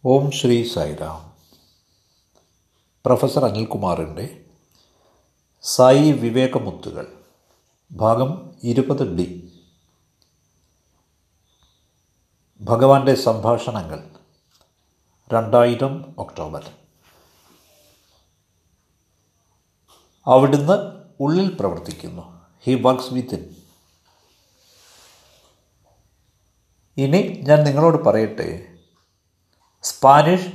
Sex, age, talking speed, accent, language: male, 60-79, 50 wpm, native, Malayalam